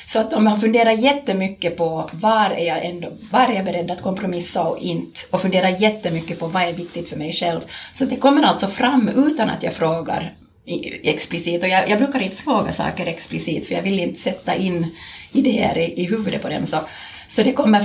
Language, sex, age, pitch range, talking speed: Swedish, female, 30-49, 170-215 Hz, 210 wpm